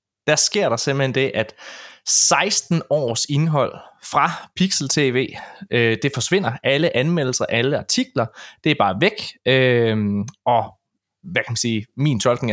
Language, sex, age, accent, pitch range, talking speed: Danish, male, 20-39, native, 115-170 Hz, 140 wpm